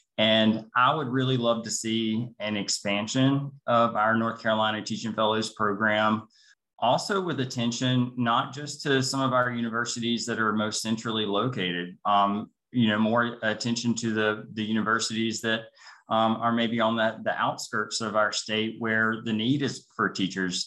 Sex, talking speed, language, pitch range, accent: male, 165 wpm, English, 105-125 Hz, American